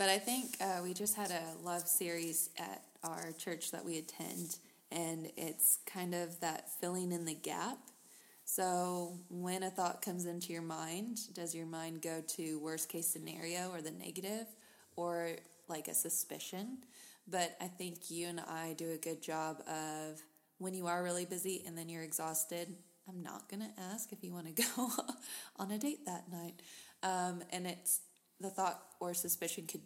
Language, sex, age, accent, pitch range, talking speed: English, female, 20-39, American, 165-190 Hz, 185 wpm